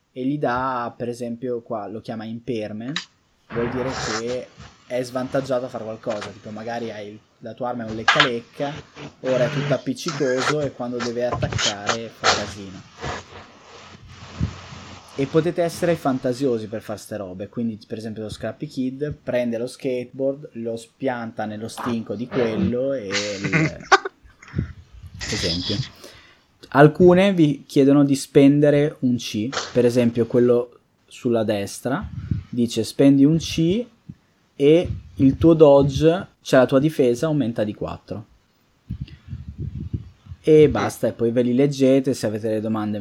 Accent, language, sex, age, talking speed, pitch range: native, Italian, male, 20-39, 140 wpm, 110-140 Hz